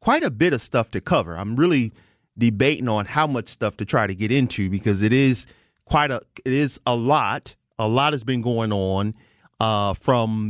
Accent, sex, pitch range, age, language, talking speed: American, male, 105-150 Hz, 30-49, English, 205 wpm